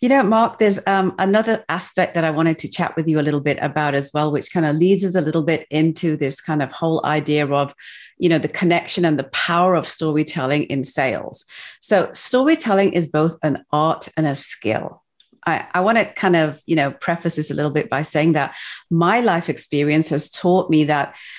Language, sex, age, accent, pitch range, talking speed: English, female, 40-59, British, 155-185 Hz, 220 wpm